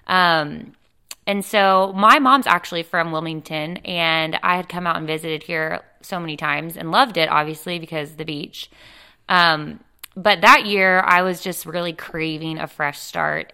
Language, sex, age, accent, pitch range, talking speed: English, female, 20-39, American, 160-195 Hz, 170 wpm